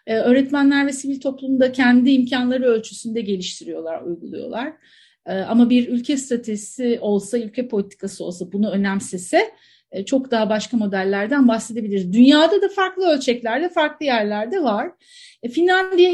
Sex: female